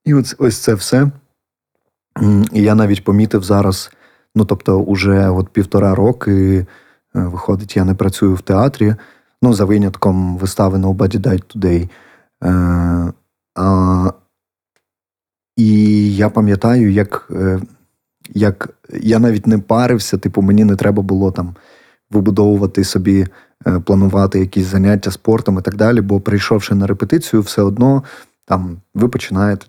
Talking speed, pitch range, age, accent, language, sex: 125 wpm, 95-110 Hz, 20-39, native, Ukrainian, male